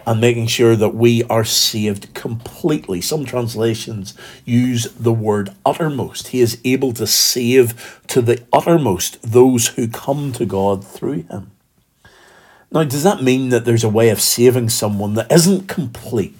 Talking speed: 155 wpm